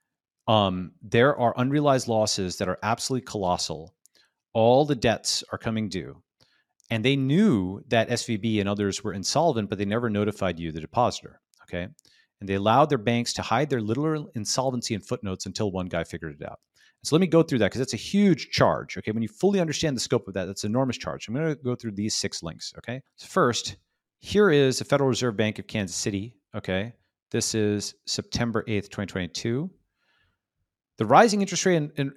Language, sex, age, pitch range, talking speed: English, male, 40-59, 105-135 Hz, 200 wpm